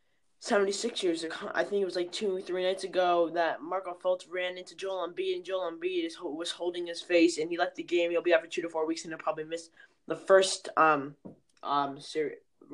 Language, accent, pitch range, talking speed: English, American, 160-190 Hz, 235 wpm